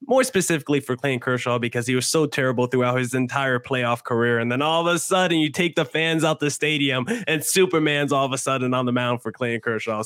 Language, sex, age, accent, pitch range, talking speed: English, male, 20-39, American, 130-170 Hz, 240 wpm